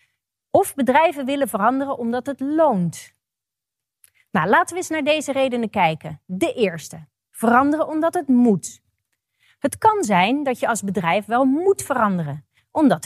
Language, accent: Dutch, Dutch